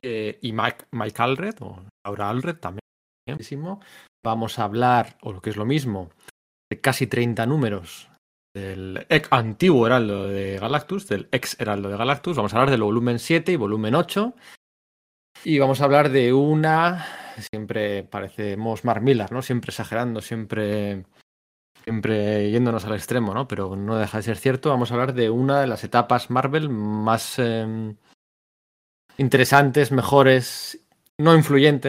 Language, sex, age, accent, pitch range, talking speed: Spanish, male, 20-39, Spanish, 105-135 Hz, 150 wpm